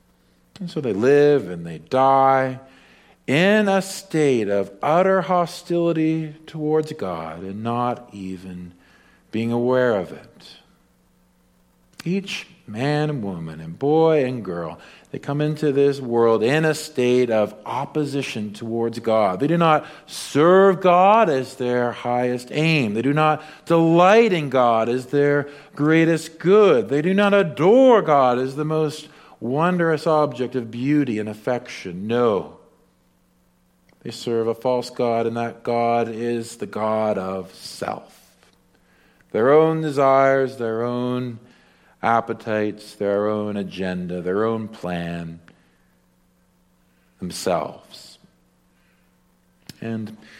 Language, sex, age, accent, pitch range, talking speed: English, male, 50-69, American, 105-150 Hz, 125 wpm